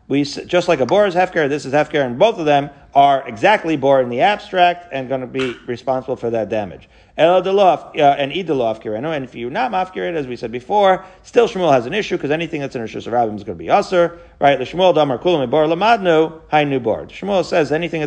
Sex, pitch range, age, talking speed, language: male, 135-180 Hz, 40-59, 190 wpm, English